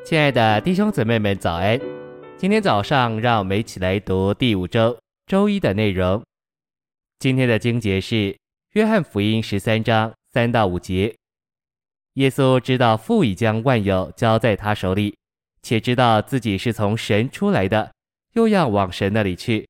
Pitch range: 100-125 Hz